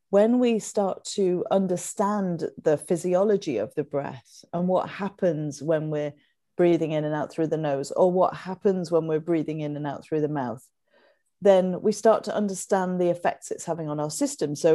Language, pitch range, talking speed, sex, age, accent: English, 160-195 Hz, 190 wpm, female, 40-59, British